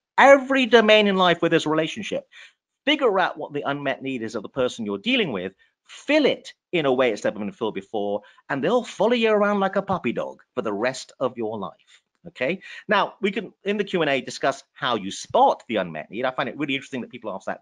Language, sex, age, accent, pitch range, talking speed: English, male, 40-59, British, 140-230 Hz, 235 wpm